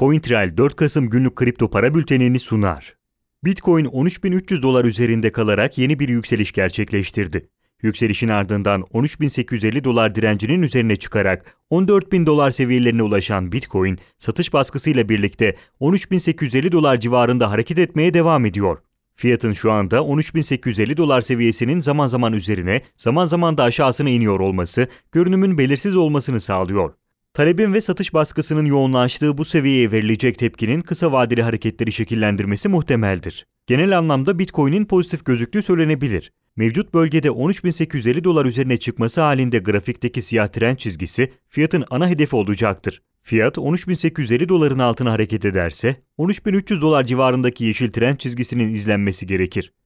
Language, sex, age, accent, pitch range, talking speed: Italian, male, 30-49, Turkish, 110-155 Hz, 130 wpm